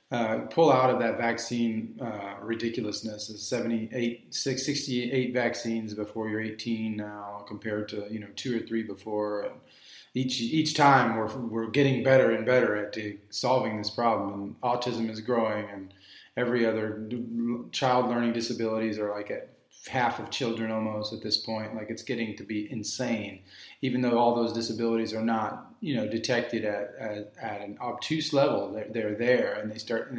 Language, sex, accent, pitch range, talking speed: English, male, American, 105-120 Hz, 175 wpm